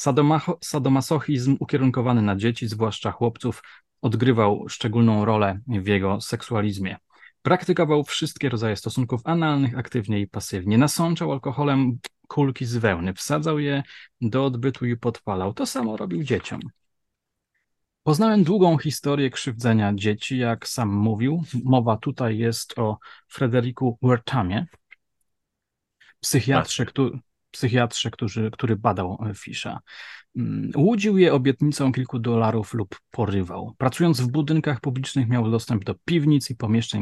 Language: Polish